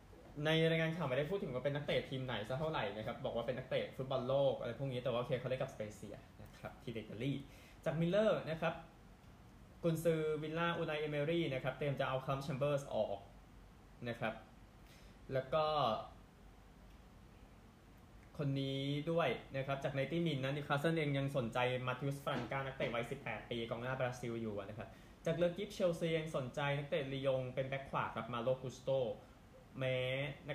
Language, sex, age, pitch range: Thai, male, 20-39, 120-150 Hz